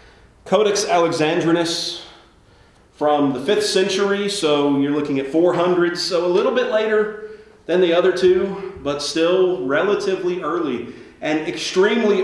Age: 40-59